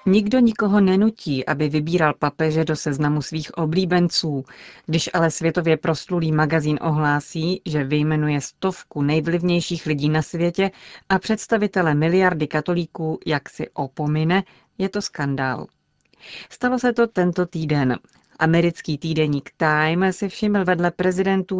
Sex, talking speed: female, 125 wpm